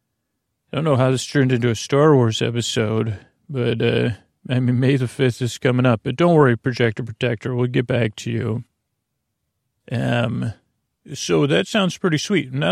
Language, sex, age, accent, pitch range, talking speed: English, male, 40-59, American, 120-135 Hz, 180 wpm